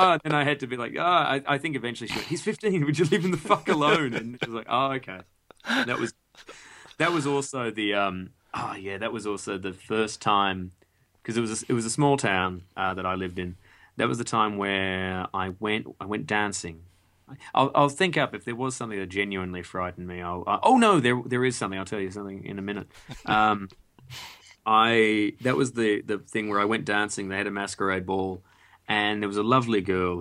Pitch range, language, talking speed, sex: 95-115 Hz, English, 235 wpm, male